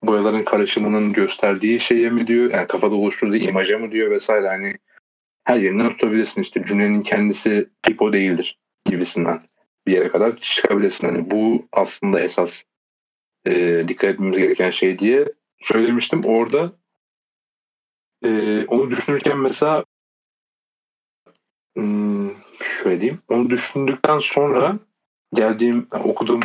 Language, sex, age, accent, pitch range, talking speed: Turkish, male, 40-59, native, 105-130 Hz, 115 wpm